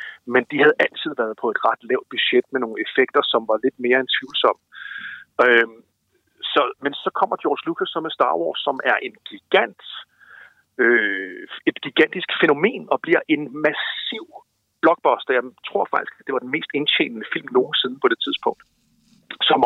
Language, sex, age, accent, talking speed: Danish, male, 50-69, native, 180 wpm